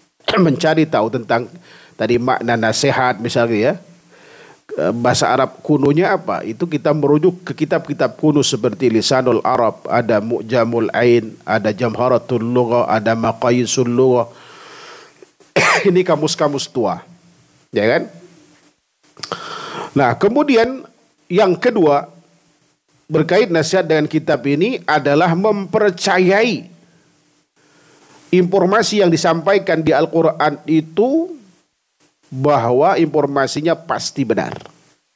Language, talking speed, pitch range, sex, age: Indonesian, 95 wpm, 140-175 Hz, male, 50-69